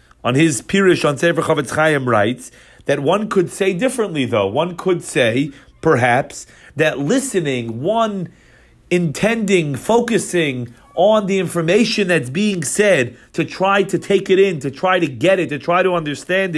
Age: 40-59